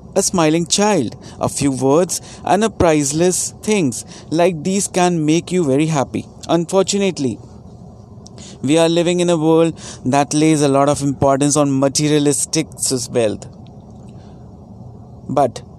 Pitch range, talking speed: 130-170 Hz, 135 wpm